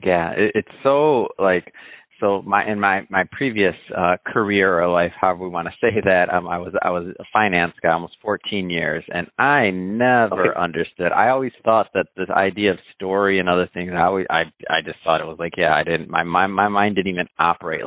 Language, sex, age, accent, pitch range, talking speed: English, male, 30-49, American, 90-110 Hz, 220 wpm